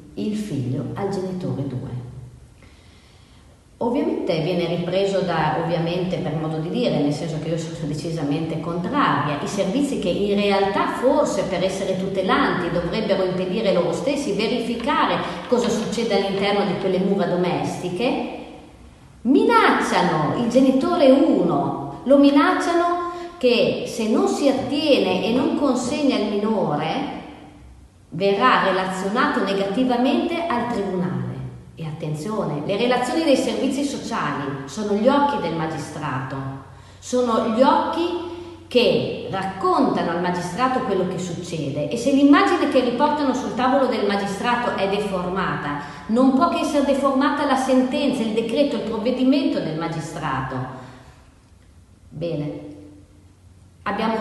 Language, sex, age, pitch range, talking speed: Italian, female, 40-59, 160-255 Hz, 125 wpm